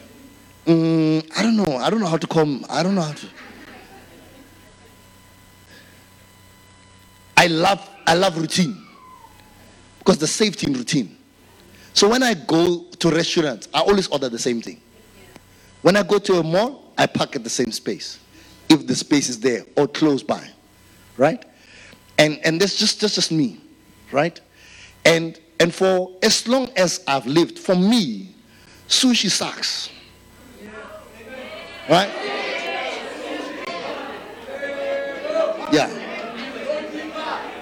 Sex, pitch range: male, 155-255 Hz